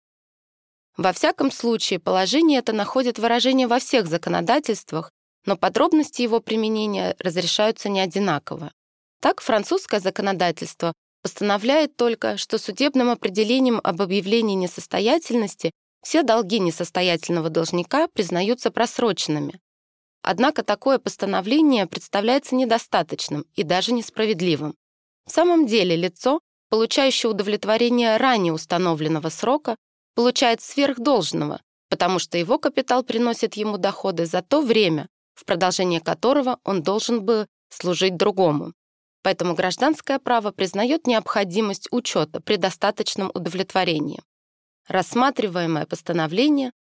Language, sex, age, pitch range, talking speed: Russian, female, 20-39, 180-240 Hz, 105 wpm